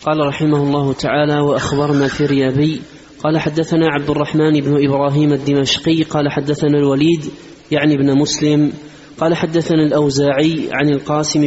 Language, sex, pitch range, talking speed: Arabic, male, 145-155 Hz, 130 wpm